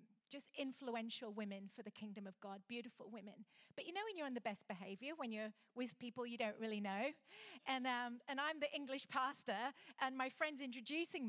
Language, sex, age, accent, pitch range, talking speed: English, female, 40-59, British, 220-280 Hz, 200 wpm